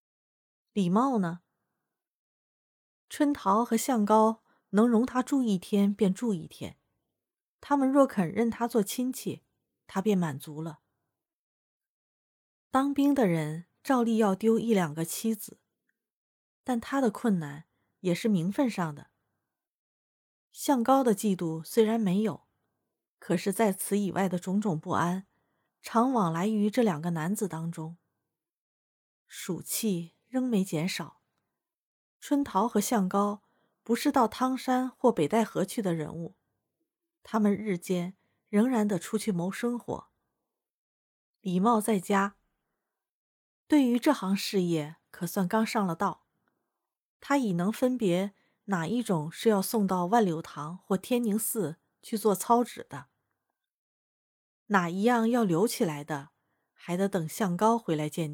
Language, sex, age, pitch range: Chinese, female, 30-49, 175-235 Hz